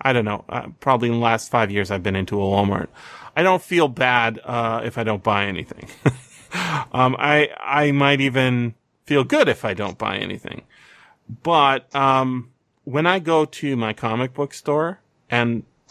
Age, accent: 30-49, American